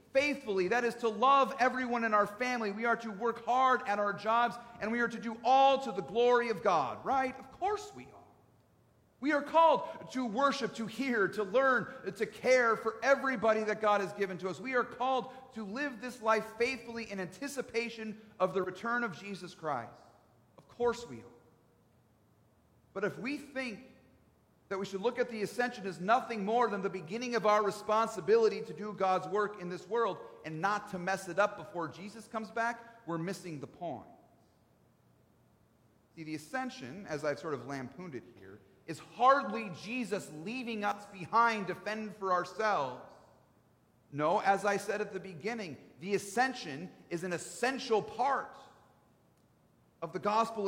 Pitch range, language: 185-240 Hz, English